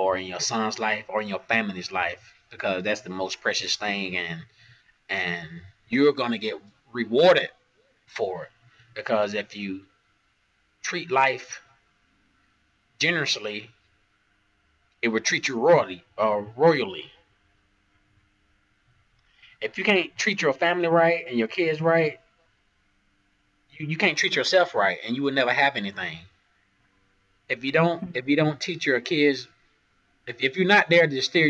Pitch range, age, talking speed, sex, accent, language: 100-135 Hz, 30-49, 145 wpm, male, American, English